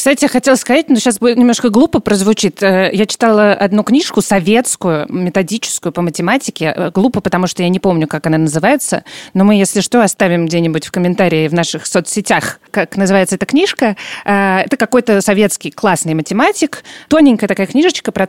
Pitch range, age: 175-230 Hz, 20-39